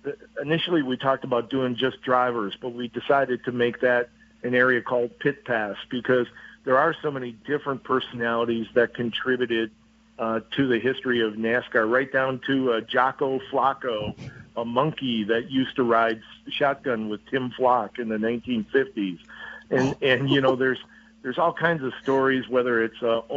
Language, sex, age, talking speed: English, male, 50-69, 165 wpm